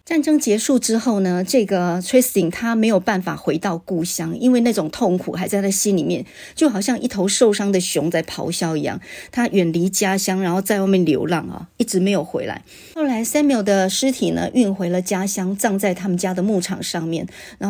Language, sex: Chinese, female